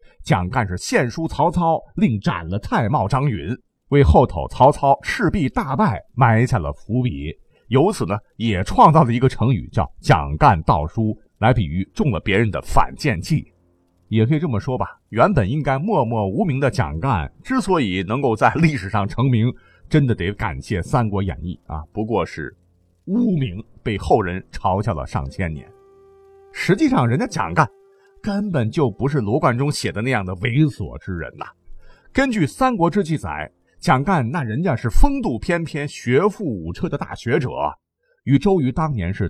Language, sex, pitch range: Chinese, male, 105-170 Hz